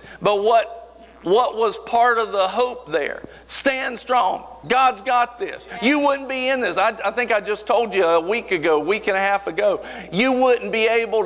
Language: English